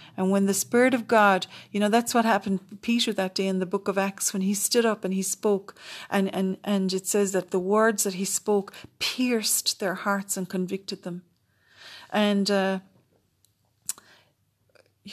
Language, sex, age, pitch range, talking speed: English, female, 40-59, 185-215 Hz, 180 wpm